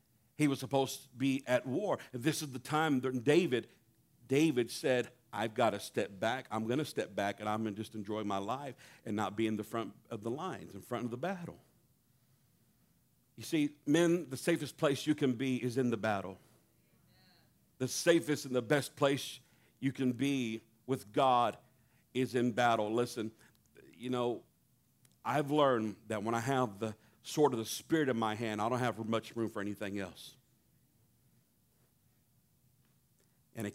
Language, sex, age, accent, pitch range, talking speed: English, male, 50-69, American, 115-140 Hz, 180 wpm